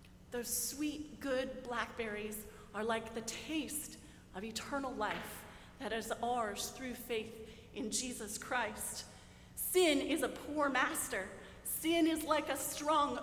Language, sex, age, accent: English, female, 30-49, American